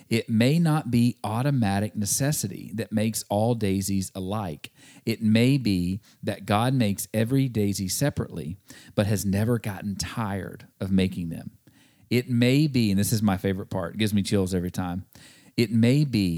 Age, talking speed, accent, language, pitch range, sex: 40-59, 170 wpm, American, English, 100-125 Hz, male